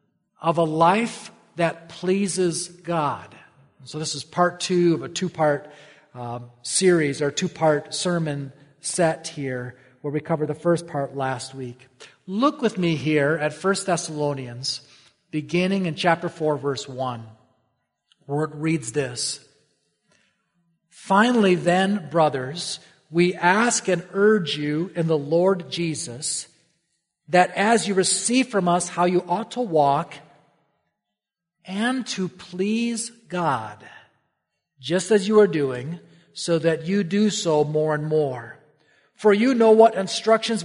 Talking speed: 135 wpm